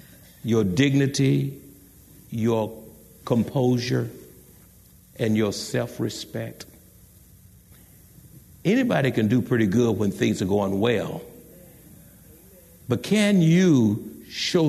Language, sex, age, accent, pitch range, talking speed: English, male, 60-79, American, 110-180 Hz, 85 wpm